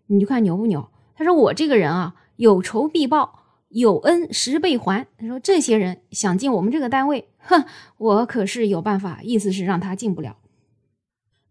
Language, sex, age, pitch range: Chinese, female, 20-39, 185-255 Hz